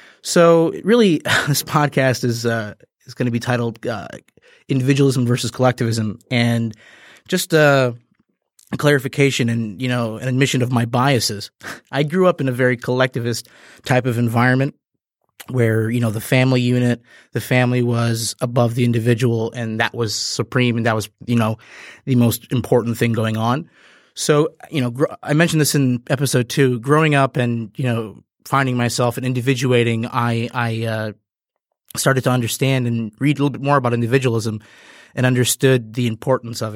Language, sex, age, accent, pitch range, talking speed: English, male, 20-39, American, 115-130 Hz, 170 wpm